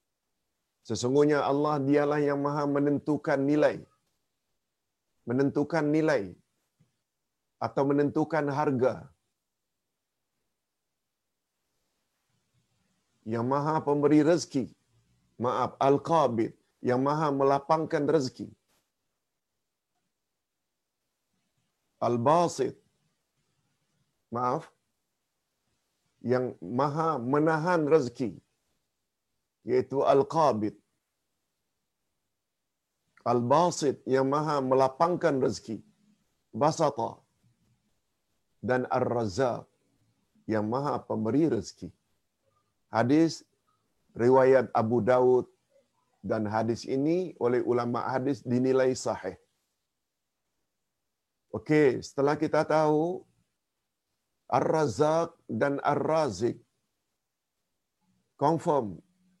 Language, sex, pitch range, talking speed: Malayalam, male, 125-155 Hz, 65 wpm